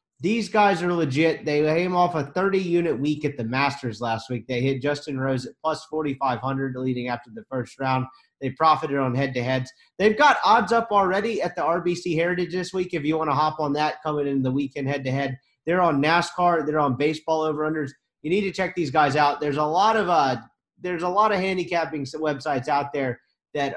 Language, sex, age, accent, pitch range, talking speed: English, male, 30-49, American, 140-180 Hz, 205 wpm